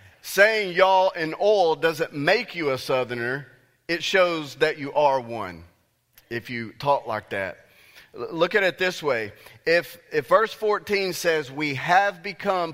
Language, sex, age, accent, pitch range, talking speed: English, male, 40-59, American, 120-165 Hz, 155 wpm